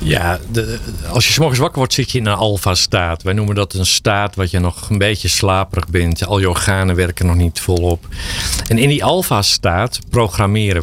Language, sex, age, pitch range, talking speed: Dutch, male, 50-69, 90-105 Hz, 200 wpm